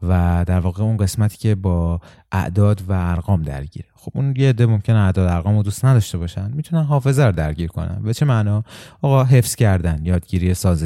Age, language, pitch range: 30-49, Persian, 90-110 Hz